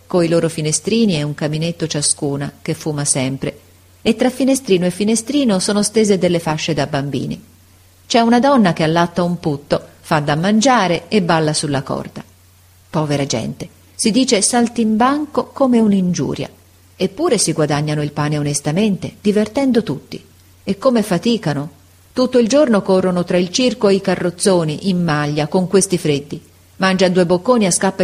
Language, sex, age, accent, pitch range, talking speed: Italian, female, 40-59, native, 150-210 Hz, 155 wpm